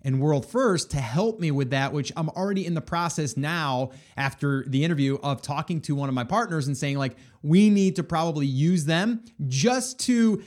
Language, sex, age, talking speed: English, male, 30-49, 205 wpm